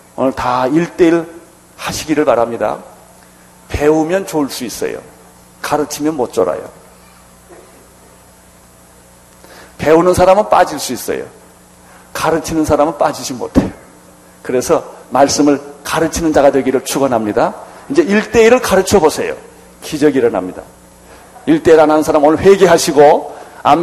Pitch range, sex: 115-180 Hz, male